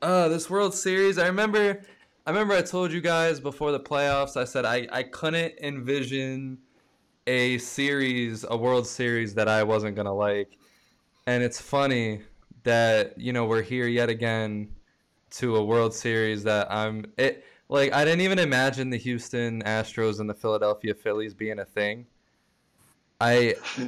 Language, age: English, 20-39